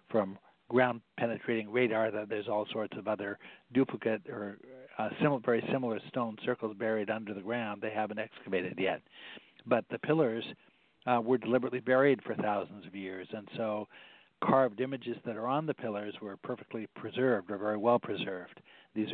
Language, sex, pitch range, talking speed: English, male, 110-125 Hz, 165 wpm